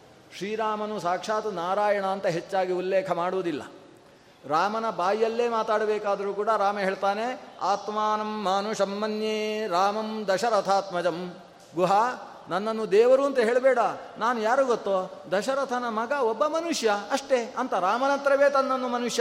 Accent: native